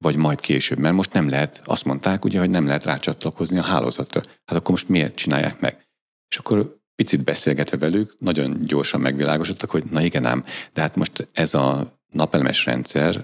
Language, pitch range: Hungarian, 70-85 Hz